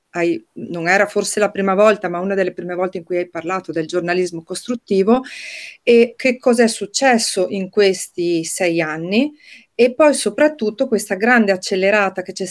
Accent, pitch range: native, 195-235 Hz